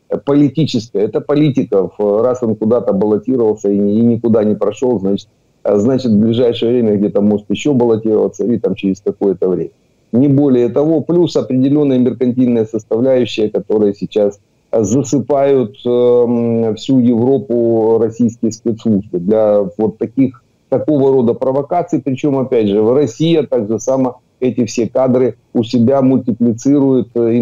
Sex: male